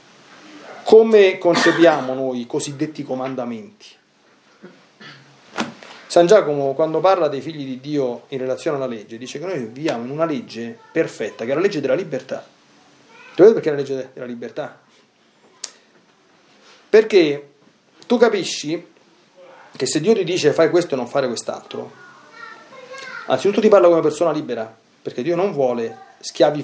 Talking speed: 145 wpm